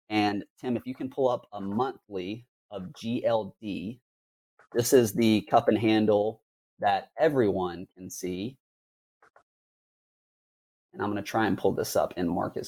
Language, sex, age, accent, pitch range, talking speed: English, male, 30-49, American, 100-120 Hz, 150 wpm